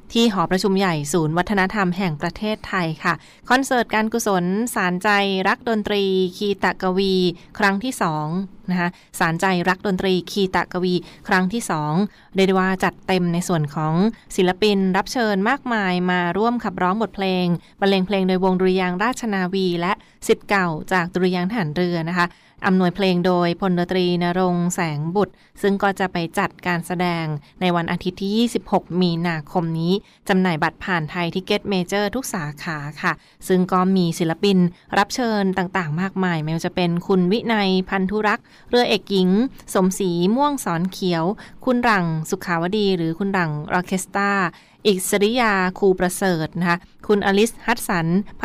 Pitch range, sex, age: 175-205 Hz, female, 20-39